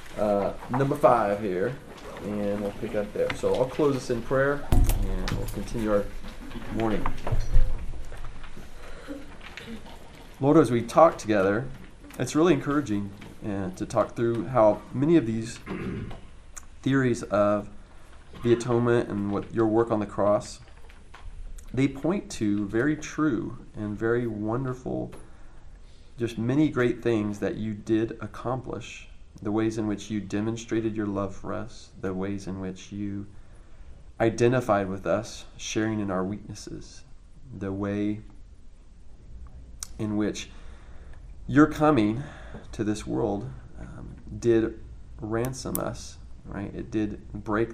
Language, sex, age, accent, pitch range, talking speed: English, male, 30-49, American, 95-115 Hz, 125 wpm